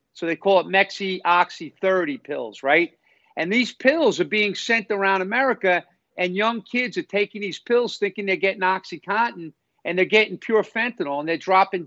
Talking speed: 170 wpm